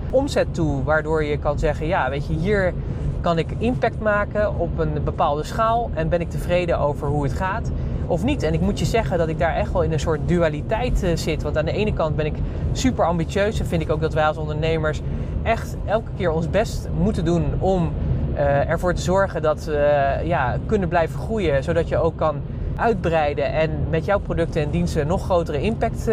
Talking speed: 210 wpm